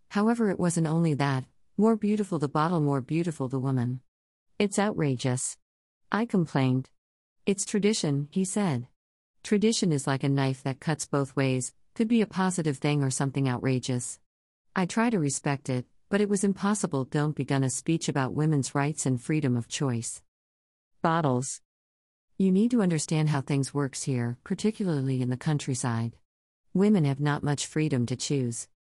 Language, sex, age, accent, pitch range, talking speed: English, female, 50-69, American, 130-175 Hz, 160 wpm